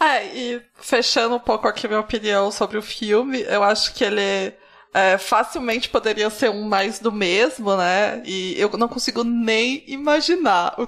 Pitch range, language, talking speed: 215-260 Hz, Portuguese, 175 wpm